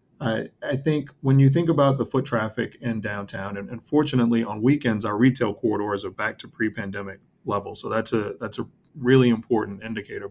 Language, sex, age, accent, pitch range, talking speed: English, male, 30-49, American, 105-120 Hz, 190 wpm